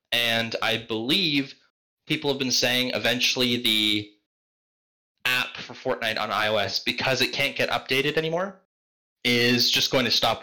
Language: English